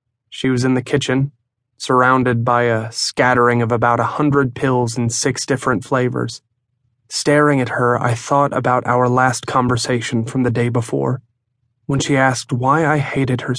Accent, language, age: American, English, 30-49